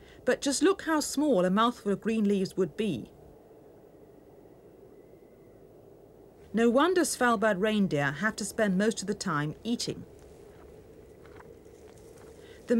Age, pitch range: 40-59, 190-260 Hz